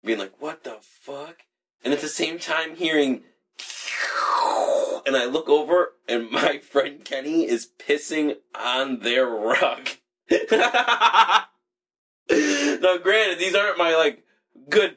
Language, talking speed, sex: English, 125 wpm, male